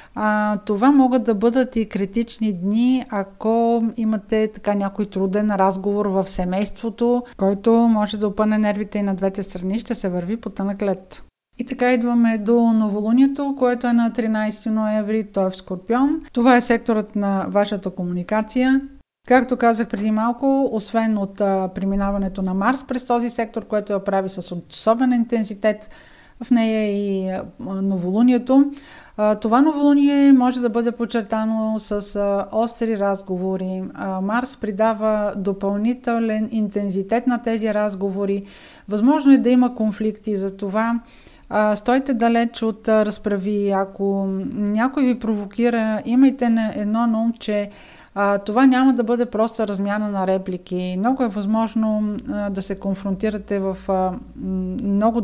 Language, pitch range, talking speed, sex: Bulgarian, 195-235 Hz, 135 wpm, female